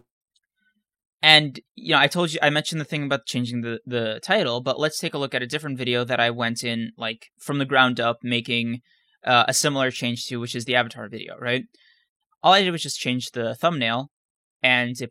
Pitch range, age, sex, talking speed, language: 120-155 Hz, 20-39, male, 220 wpm, English